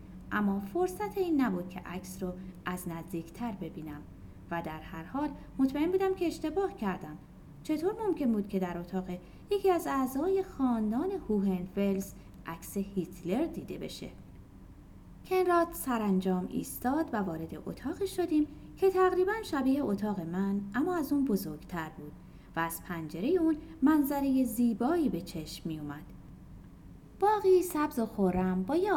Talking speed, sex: 140 wpm, female